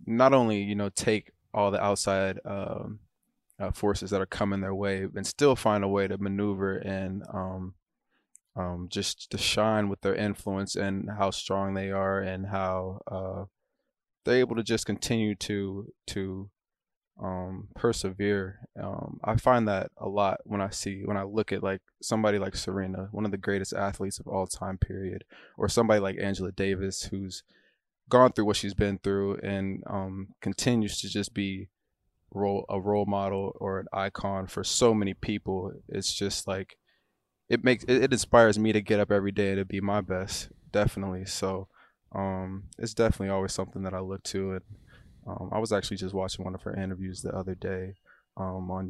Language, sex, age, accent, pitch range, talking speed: English, male, 20-39, American, 95-105 Hz, 185 wpm